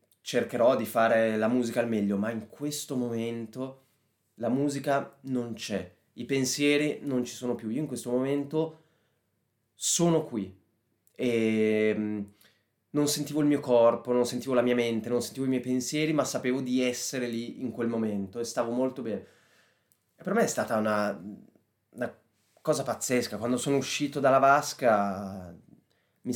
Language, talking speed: Italian, 155 wpm